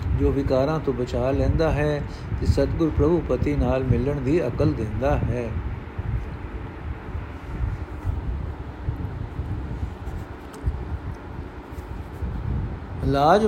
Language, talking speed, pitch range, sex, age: Punjabi, 65 wpm, 120-160 Hz, male, 60-79